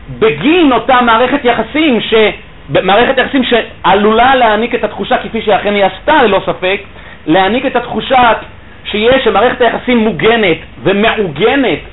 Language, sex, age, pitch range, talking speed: Hebrew, male, 40-59, 135-225 Hz, 125 wpm